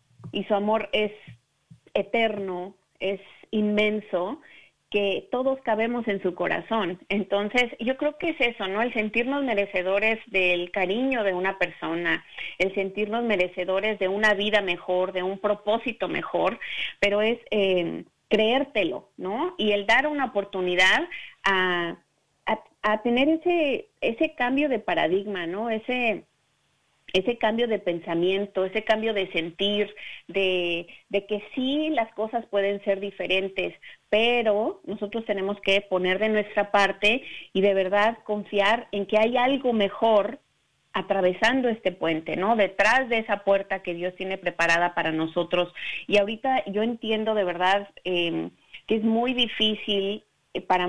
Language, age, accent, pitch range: Spanish, 40-59, Mexican, 190-225 Hz